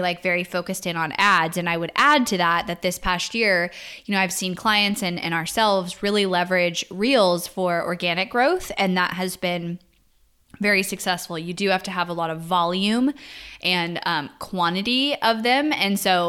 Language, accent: English, American